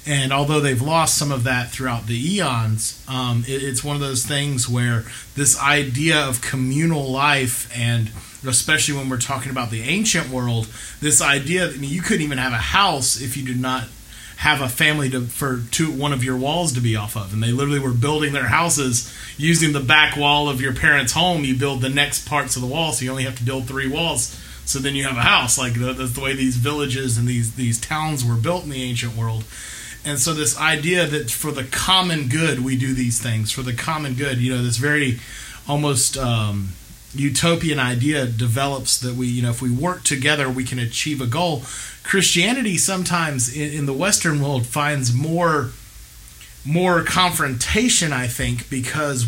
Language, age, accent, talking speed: English, 30-49, American, 205 wpm